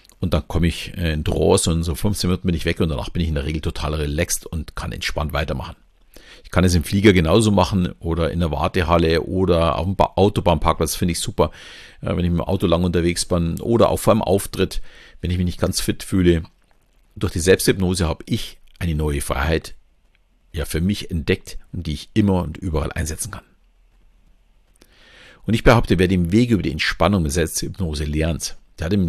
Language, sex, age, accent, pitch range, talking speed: German, male, 50-69, German, 80-95 Hz, 205 wpm